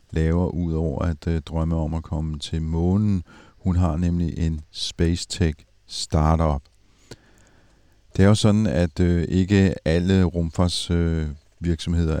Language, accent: Danish, native